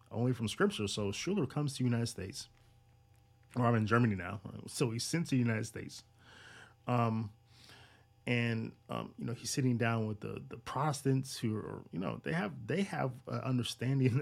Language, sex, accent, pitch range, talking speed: English, male, American, 115-130 Hz, 185 wpm